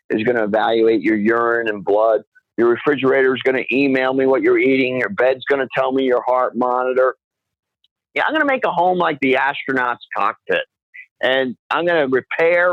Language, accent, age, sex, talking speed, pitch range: English, American, 50-69, male, 205 wpm, 125-165 Hz